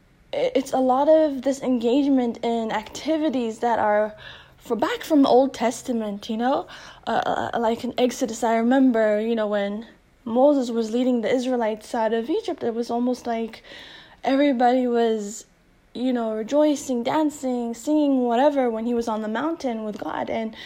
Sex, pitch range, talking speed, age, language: female, 215-255 Hz, 165 wpm, 10-29, English